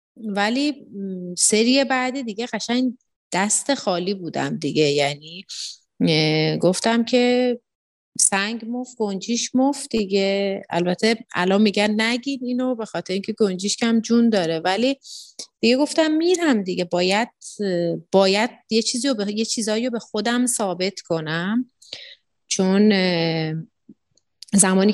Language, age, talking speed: Persian, 30-49, 110 wpm